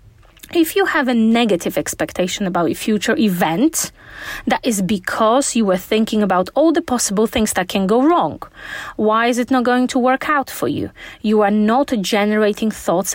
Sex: female